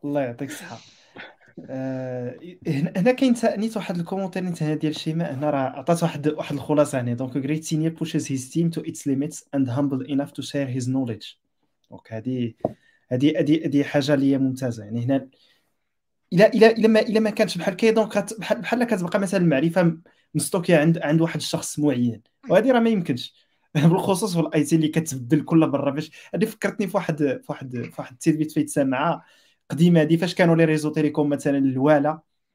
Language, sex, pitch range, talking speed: Arabic, male, 150-215 Hz, 120 wpm